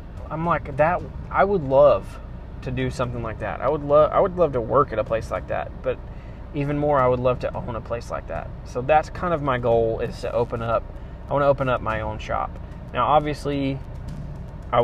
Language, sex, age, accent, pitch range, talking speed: English, male, 20-39, American, 110-125 Hz, 230 wpm